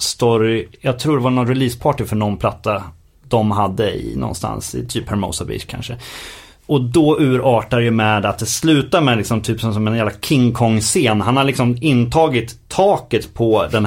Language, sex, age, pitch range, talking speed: Swedish, male, 30-49, 110-135 Hz, 185 wpm